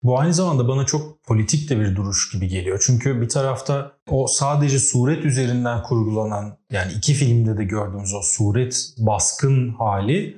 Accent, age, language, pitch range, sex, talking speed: native, 30-49, Turkish, 115-150 Hz, male, 160 wpm